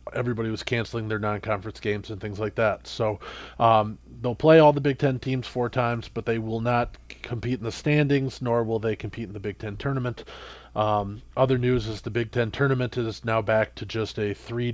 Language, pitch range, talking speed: English, 105-125 Hz, 215 wpm